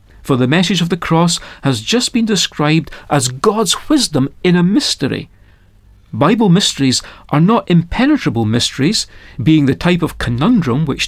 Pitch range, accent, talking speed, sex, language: 120-180 Hz, British, 150 wpm, male, English